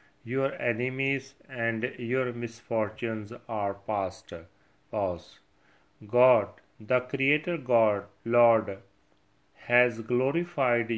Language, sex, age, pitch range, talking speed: Punjabi, male, 40-59, 110-130 Hz, 80 wpm